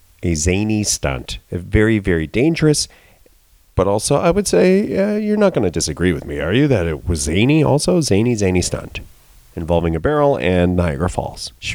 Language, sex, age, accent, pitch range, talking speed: English, male, 40-59, American, 80-115 Hz, 190 wpm